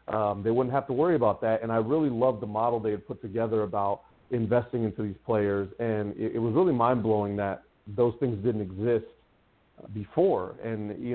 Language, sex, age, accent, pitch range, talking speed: English, male, 40-59, American, 105-125 Hz, 200 wpm